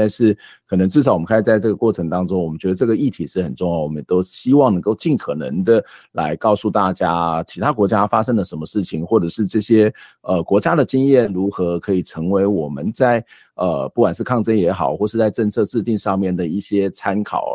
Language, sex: Chinese, male